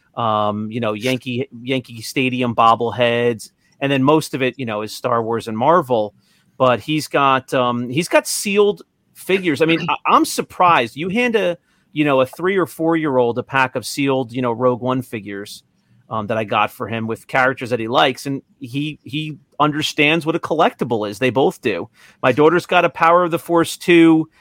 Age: 40-59